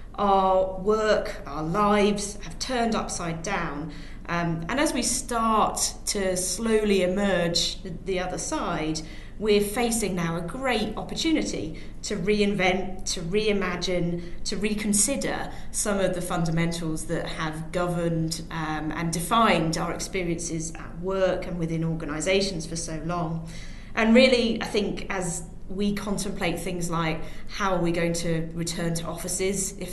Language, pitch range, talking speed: English, 165-205 Hz, 140 wpm